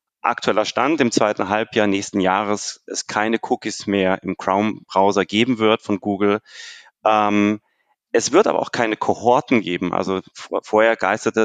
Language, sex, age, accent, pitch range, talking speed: German, male, 30-49, German, 105-125 Hz, 150 wpm